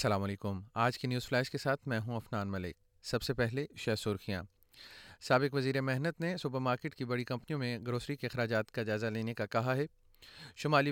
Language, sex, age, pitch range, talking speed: Urdu, male, 30-49, 120-155 Hz, 205 wpm